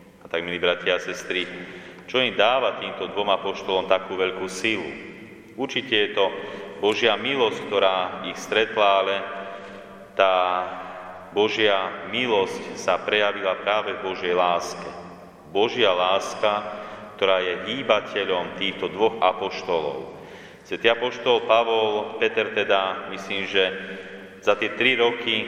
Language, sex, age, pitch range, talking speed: Slovak, male, 30-49, 95-105 Hz, 120 wpm